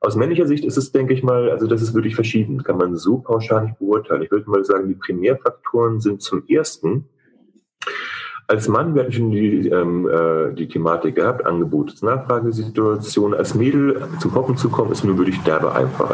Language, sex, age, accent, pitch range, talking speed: German, male, 30-49, German, 105-165 Hz, 190 wpm